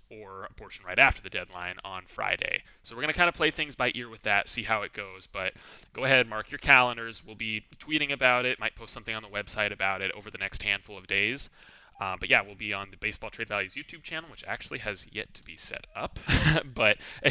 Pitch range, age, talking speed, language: 105-130 Hz, 20-39, 245 wpm, English